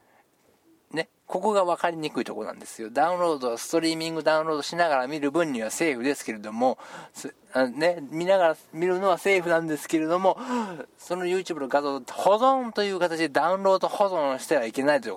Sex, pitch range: male, 130-180 Hz